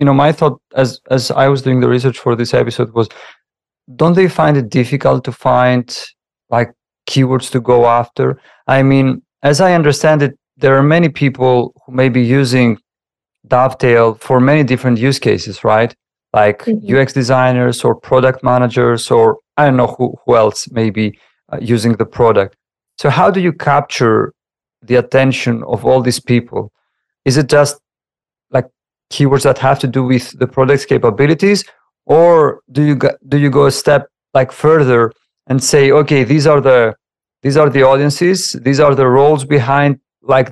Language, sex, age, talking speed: English, male, 40-59, 175 wpm